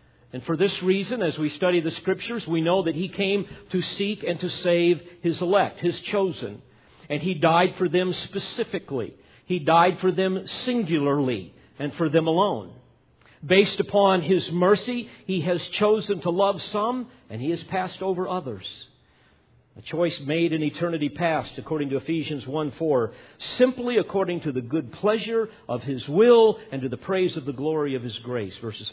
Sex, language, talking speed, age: male, English, 175 wpm, 50-69